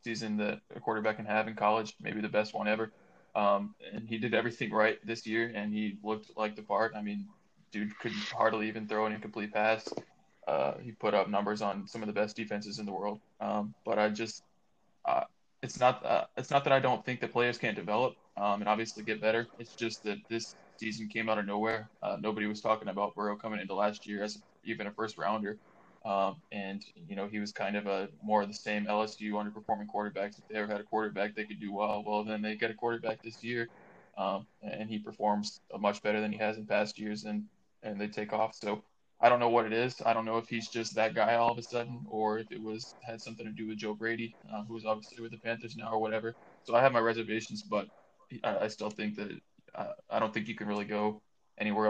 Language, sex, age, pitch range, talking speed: English, male, 20-39, 105-115 Hz, 240 wpm